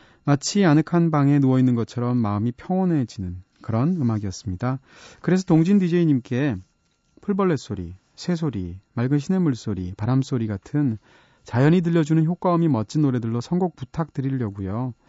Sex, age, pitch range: male, 30-49, 115-165 Hz